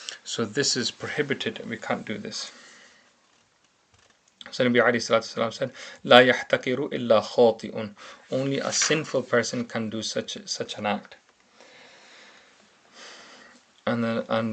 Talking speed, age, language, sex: 110 wpm, 30-49, English, male